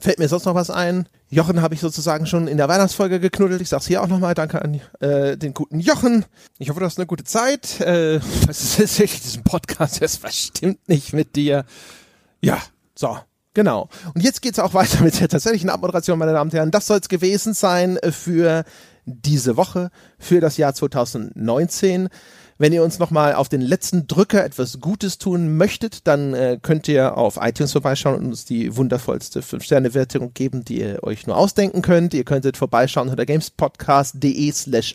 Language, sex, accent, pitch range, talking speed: German, male, German, 135-180 Hz, 185 wpm